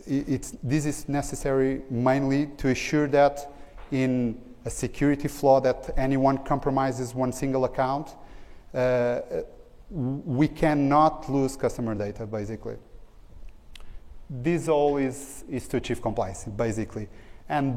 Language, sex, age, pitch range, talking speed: English, male, 30-49, 120-140 Hz, 115 wpm